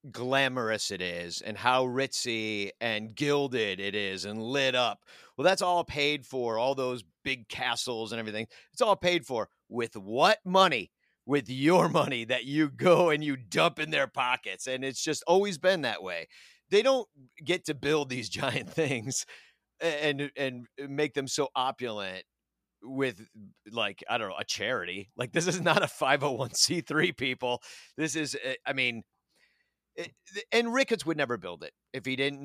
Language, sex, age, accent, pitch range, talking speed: English, male, 40-59, American, 120-165 Hz, 180 wpm